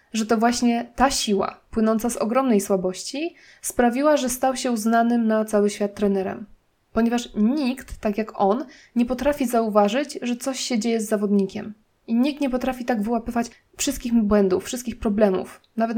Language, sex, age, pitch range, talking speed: Polish, female, 20-39, 200-240 Hz, 160 wpm